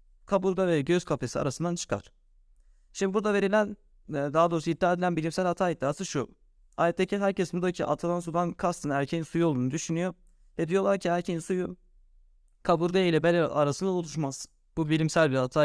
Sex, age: male, 30-49